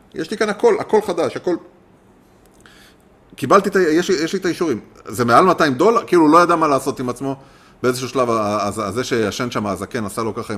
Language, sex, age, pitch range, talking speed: English, male, 30-49, 105-140 Hz, 195 wpm